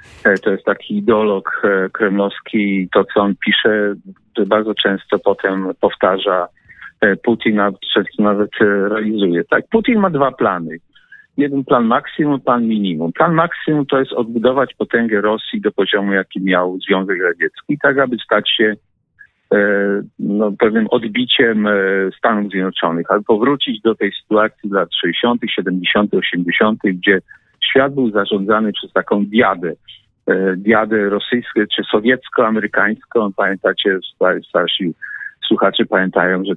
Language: Polish